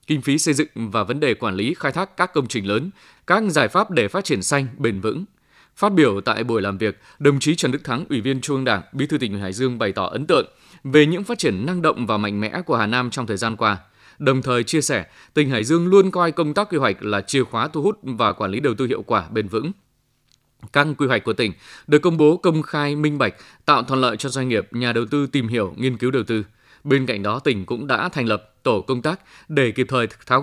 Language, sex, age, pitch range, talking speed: Vietnamese, male, 20-39, 115-155 Hz, 260 wpm